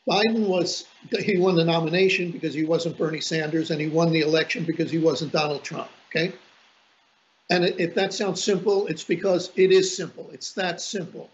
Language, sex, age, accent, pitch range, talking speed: English, male, 50-69, American, 170-200 Hz, 185 wpm